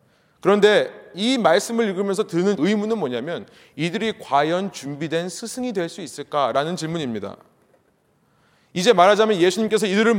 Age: 30-49